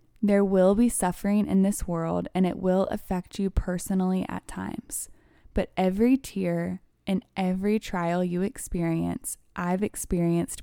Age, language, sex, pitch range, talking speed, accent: 20-39, English, female, 175-210 Hz, 140 wpm, American